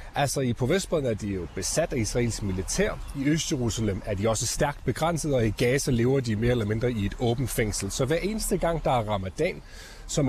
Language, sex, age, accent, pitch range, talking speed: Danish, male, 30-49, native, 115-155 Hz, 220 wpm